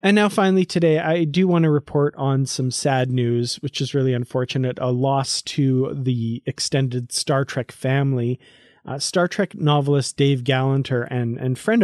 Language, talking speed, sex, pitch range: English, 170 wpm, male, 125-150 Hz